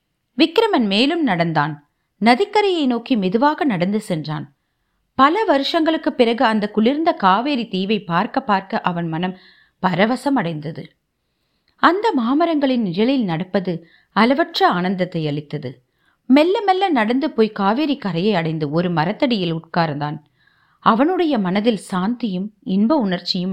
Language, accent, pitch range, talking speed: Tamil, native, 170-250 Hz, 110 wpm